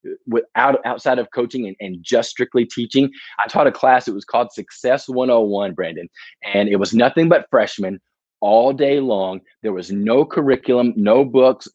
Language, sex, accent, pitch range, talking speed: English, male, American, 110-140 Hz, 175 wpm